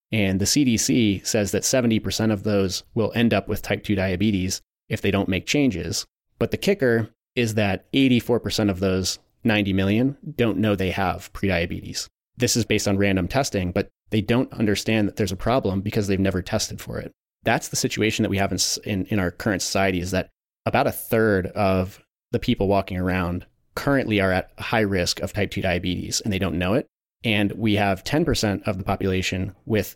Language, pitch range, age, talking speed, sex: English, 95-110 Hz, 30-49, 200 wpm, male